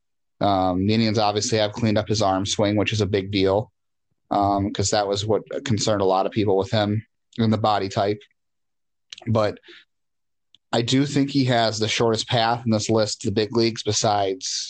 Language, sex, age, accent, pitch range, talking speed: English, male, 30-49, American, 100-115 Hz, 190 wpm